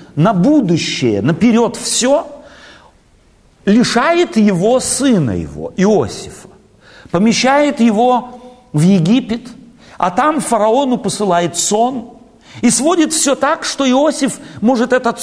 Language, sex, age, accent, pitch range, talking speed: Russian, male, 50-69, native, 170-245 Hz, 100 wpm